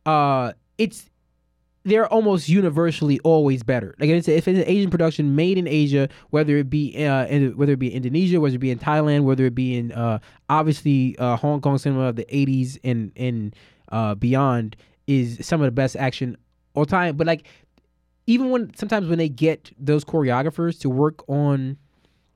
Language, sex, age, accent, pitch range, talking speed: English, male, 20-39, American, 130-165 Hz, 185 wpm